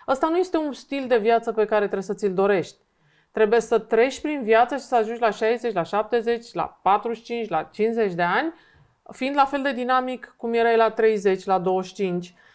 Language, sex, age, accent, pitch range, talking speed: Romanian, female, 30-49, native, 195-255 Hz, 195 wpm